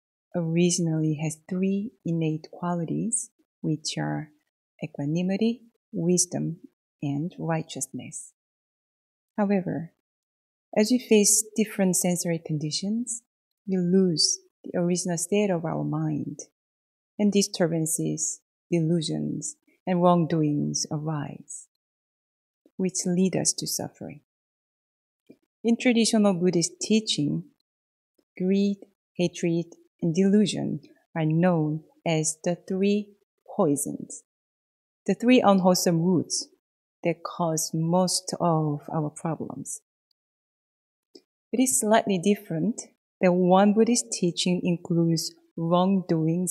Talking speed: 90 wpm